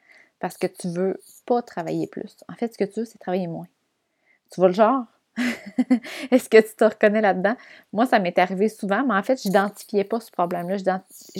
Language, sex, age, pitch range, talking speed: French, female, 20-39, 180-230 Hz, 215 wpm